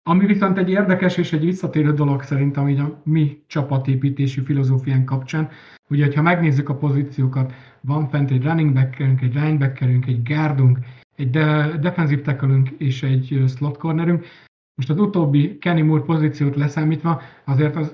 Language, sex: Hungarian, male